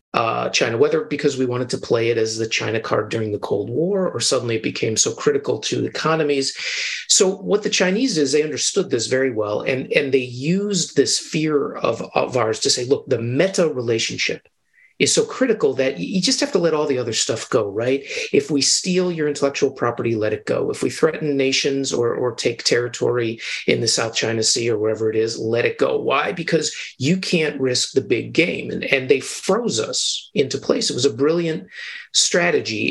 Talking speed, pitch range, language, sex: 205 wpm, 125-190 Hz, English, male